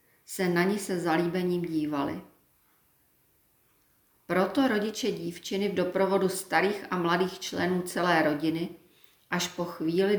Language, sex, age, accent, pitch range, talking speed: Czech, female, 40-59, native, 165-195 Hz, 120 wpm